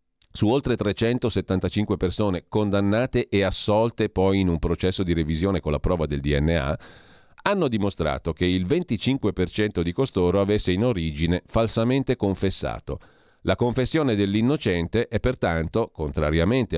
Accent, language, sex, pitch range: native, Italian, male, 85-115 Hz